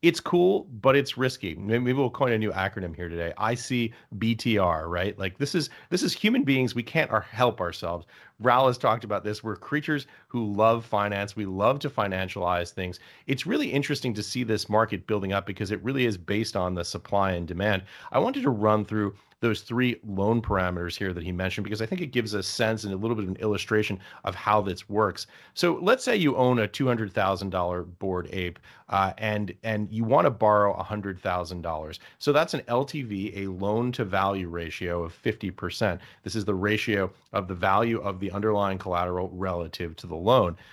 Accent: American